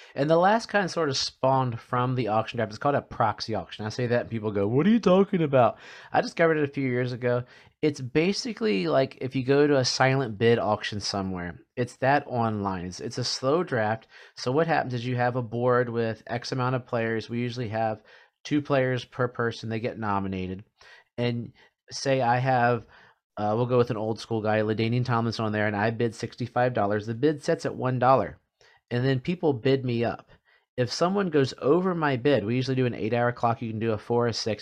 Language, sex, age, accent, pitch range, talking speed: English, male, 30-49, American, 115-135 Hz, 220 wpm